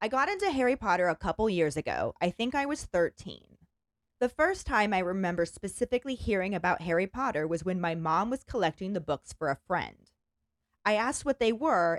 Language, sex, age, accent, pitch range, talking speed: English, female, 20-39, American, 170-240 Hz, 200 wpm